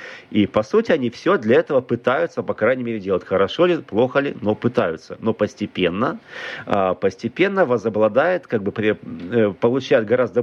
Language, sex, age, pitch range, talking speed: Russian, male, 40-59, 110-140 Hz, 155 wpm